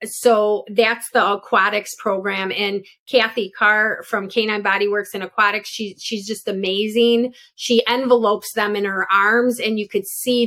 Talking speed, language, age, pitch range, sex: 155 wpm, English, 30-49, 205-235 Hz, female